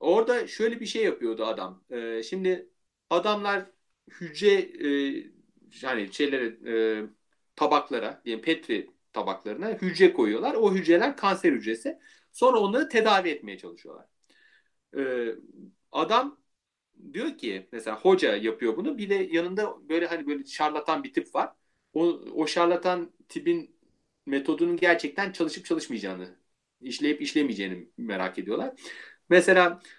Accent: native